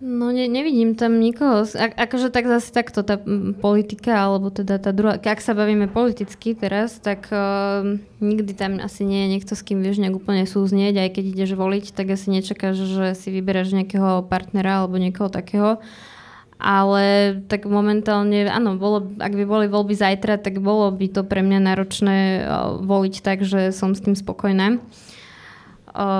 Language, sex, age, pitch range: Slovak, female, 20-39, 195-220 Hz